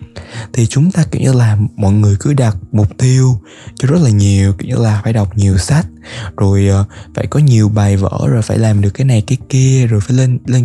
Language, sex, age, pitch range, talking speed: Vietnamese, male, 20-39, 105-130 Hz, 230 wpm